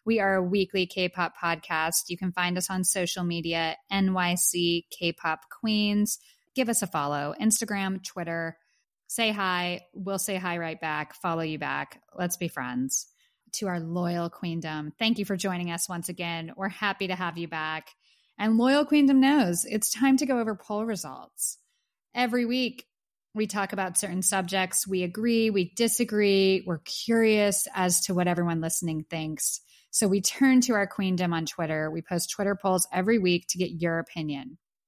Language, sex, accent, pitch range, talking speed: English, female, American, 170-215 Hz, 175 wpm